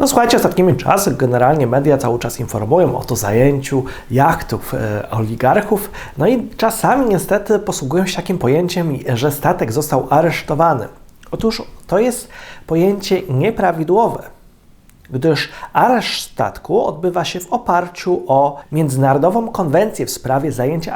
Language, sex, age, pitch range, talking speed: Polish, male, 40-59, 130-180 Hz, 125 wpm